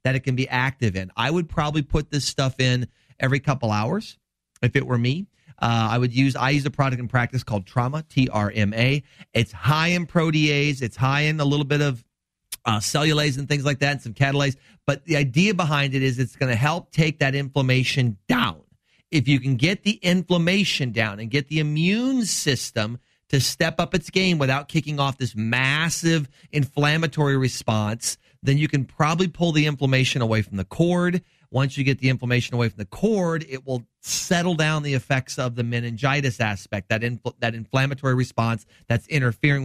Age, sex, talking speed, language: 40-59, male, 195 wpm, English